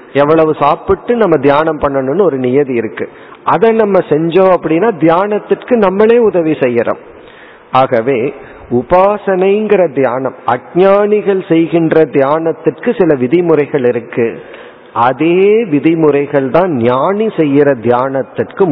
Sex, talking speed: male, 100 wpm